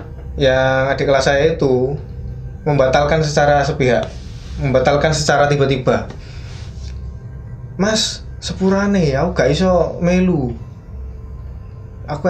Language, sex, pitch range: Indonesian, male, 115-155 Hz